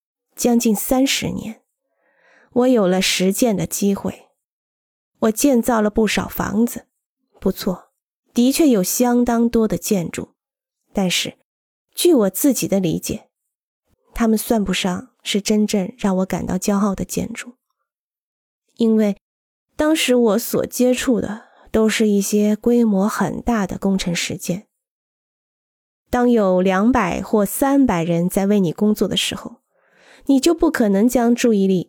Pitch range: 200-255 Hz